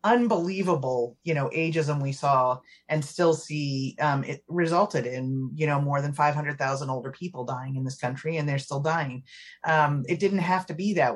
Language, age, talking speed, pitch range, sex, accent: English, 30-49, 190 wpm, 140-180 Hz, female, American